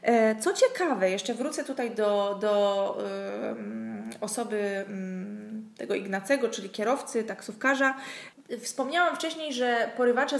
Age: 20-39